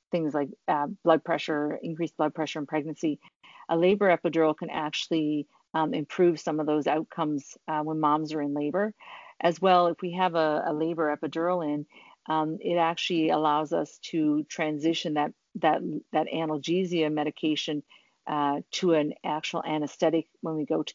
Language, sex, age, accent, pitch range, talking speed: English, female, 50-69, American, 150-170 Hz, 165 wpm